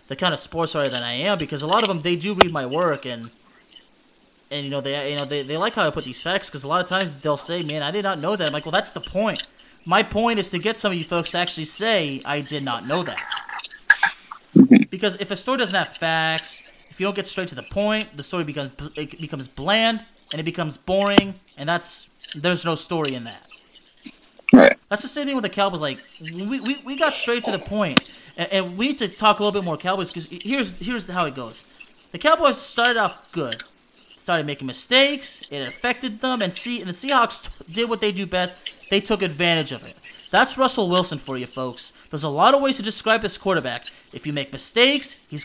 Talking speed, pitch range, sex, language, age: 240 wpm, 150-215 Hz, male, English, 30-49